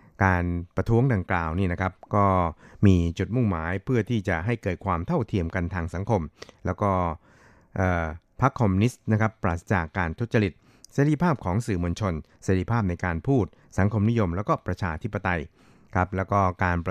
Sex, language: male, Thai